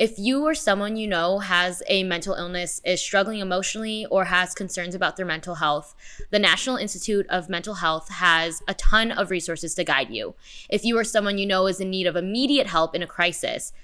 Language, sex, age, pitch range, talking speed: English, female, 10-29, 180-220 Hz, 215 wpm